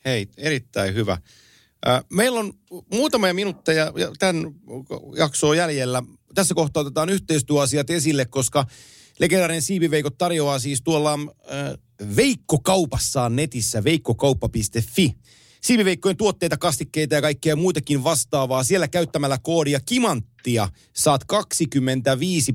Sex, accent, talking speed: male, native, 105 wpm